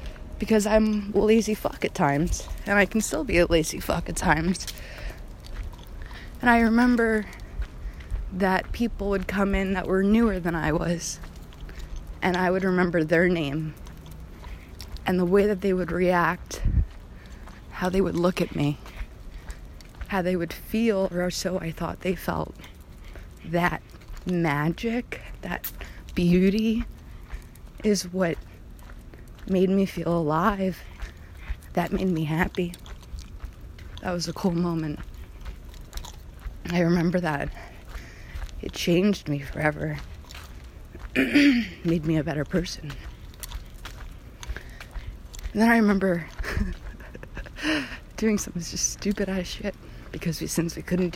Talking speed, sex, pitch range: 125 wpm, female, 130-190 Hz